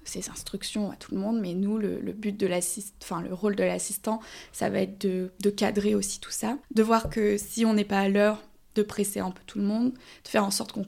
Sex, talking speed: female, 265 wpm